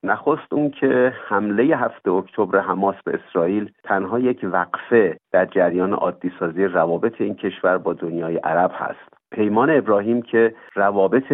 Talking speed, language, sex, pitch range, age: 145 wpm, Persian, male, 95-120 Hz, 50-69